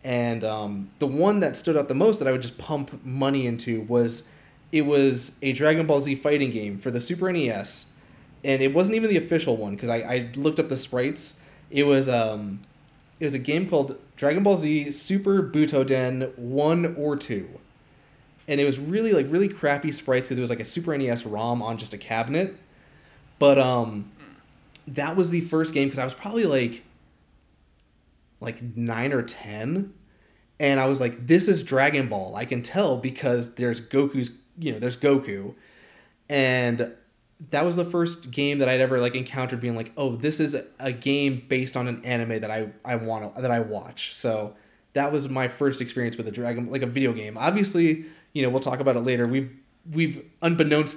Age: 20-39